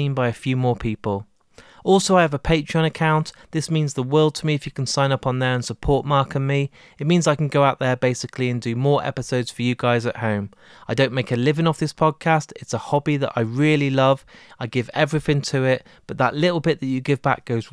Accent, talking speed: British, 255 wpm